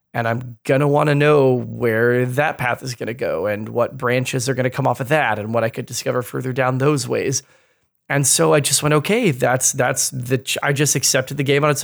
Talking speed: 250 wpm